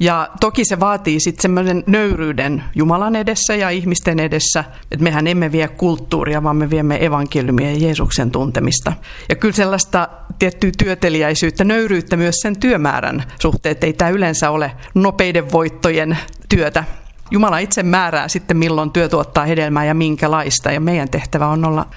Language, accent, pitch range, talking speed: Finnish, native, 150-185 Hz, 155 wpm